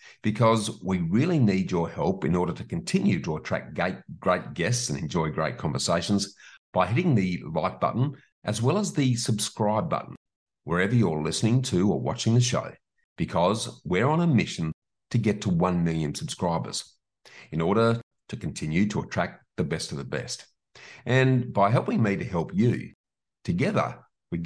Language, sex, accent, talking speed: English, male, Australian, 165 wpm